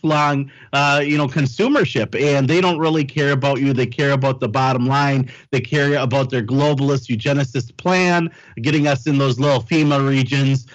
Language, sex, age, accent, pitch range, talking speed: English, male, 40-59, American, 140-165 Hz, 180 wpm